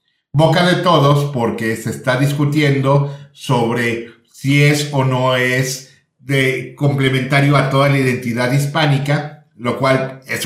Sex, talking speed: male, 130 wpm